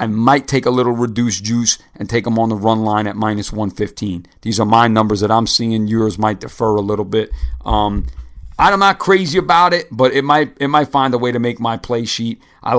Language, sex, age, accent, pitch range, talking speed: English, male, 50-69, American, 105-125 Hz, 240 wpm